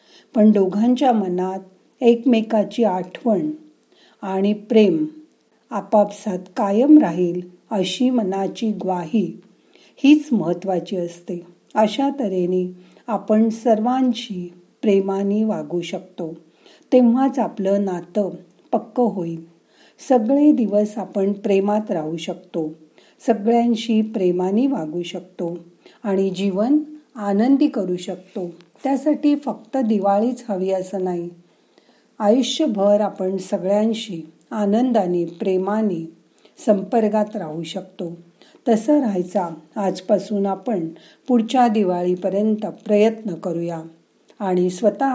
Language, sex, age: Marathi, female, 40-59